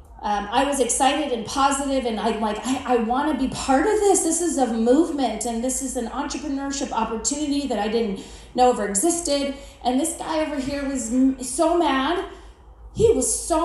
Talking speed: 200 wpm